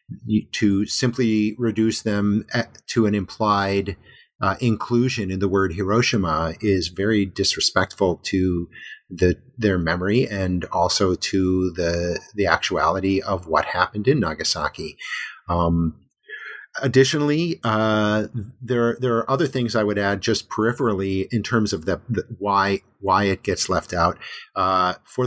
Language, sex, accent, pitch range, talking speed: English, male, American, 95-120 Hz, 135 wpm